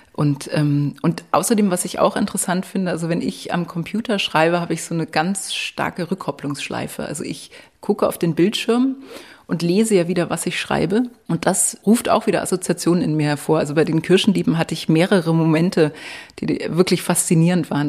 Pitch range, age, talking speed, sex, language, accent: 155-190 Hz, 30-49, 185 wpm, female, German, German